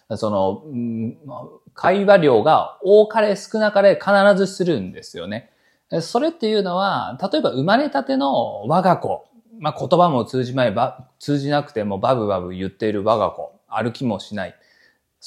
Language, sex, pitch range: Japanese, male, 120-195 Hz